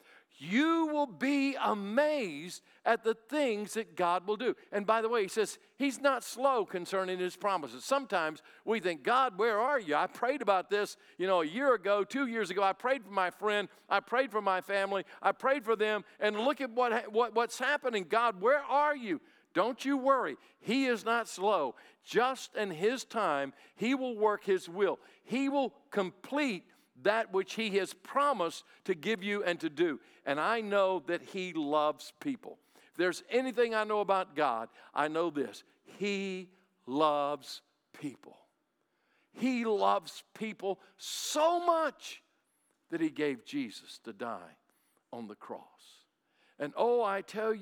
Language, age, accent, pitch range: English, 50-69, American, 180-255 Hz